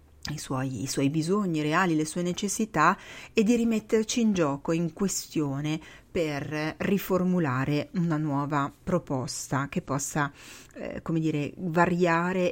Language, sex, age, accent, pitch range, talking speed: Italian, female, 40-59, native, 150-190 Hz, 130 wpm